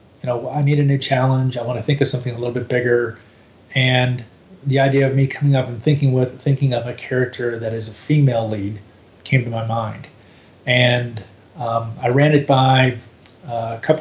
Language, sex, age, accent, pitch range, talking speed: English, male, 30-49, American, 115-135 Hz, 210 wpm